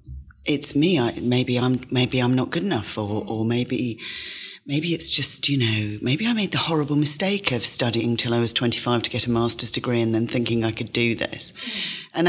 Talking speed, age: 210 wpm, 30-49